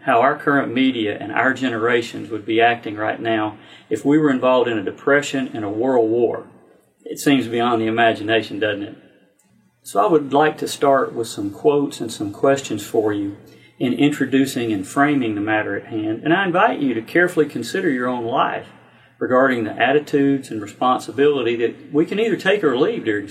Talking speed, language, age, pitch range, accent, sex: 195 wpm, English, 40-59, 115-145 Hz, American, male